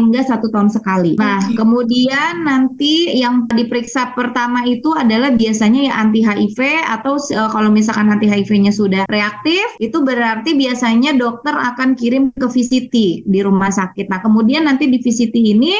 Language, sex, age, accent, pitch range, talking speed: Indonesian, female, 20-39, native, 210-265 Hz, 150 wpm